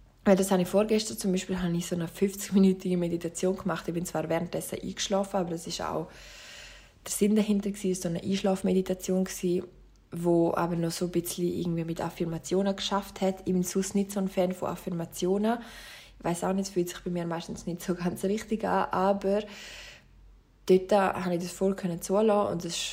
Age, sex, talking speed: 20-39, female, 185 wpm